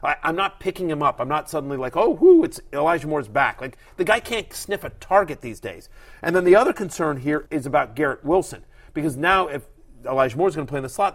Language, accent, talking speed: English, American, 240 wpm